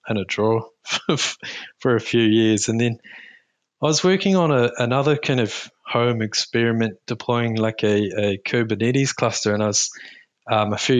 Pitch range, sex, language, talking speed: 110-145 Hz, male, English, 170 wpm